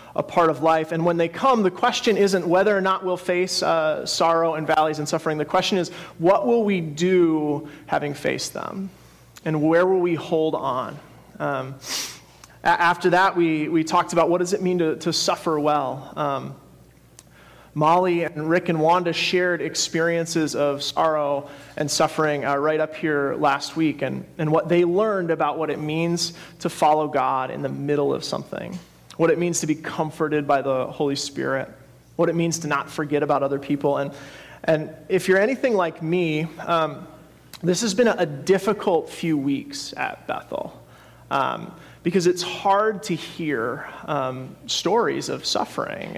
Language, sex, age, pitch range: English, male, 30-49, 150-180 Hz